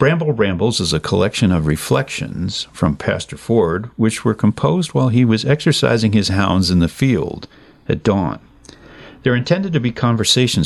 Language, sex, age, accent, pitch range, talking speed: English, male, 50-69, American, 85-115 Hz, 165 wpm